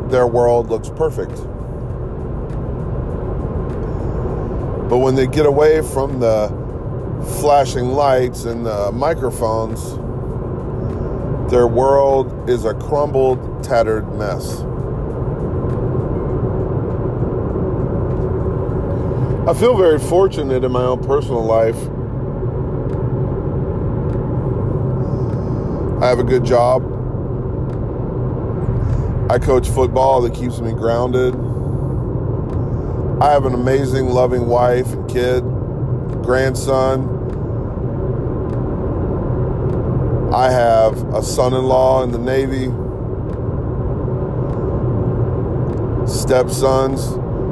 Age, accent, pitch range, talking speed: 40-59, American, 120-130 Hz, 80 wpm